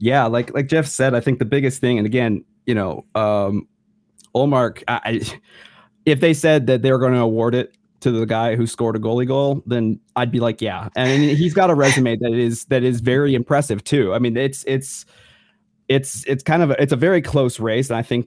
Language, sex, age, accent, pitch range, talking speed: English, male, 30-49, American, 110-135 Hz, 220 wpm